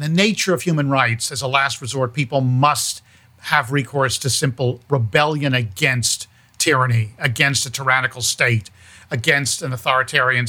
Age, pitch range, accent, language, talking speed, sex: 50-69, 115-155 Hz, American, English, 145 wpm, male